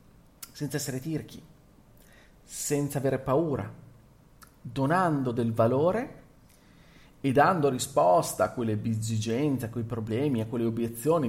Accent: native